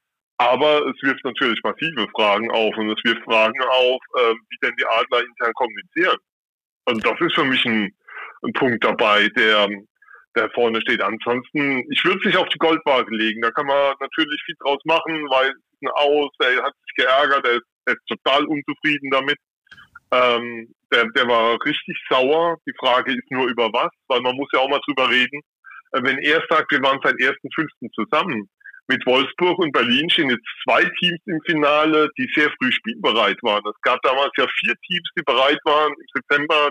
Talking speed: 190 wpm